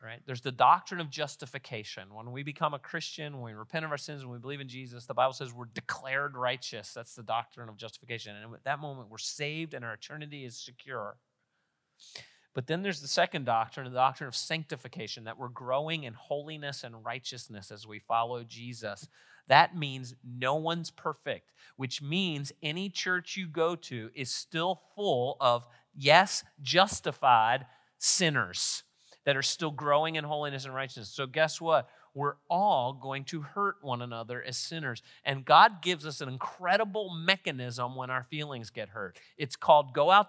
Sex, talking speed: male, 175 wpm